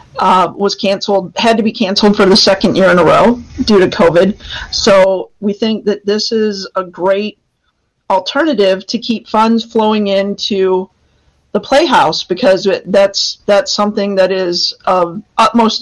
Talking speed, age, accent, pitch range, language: 155 wpm, 40-59, American, 185-215 Hz, English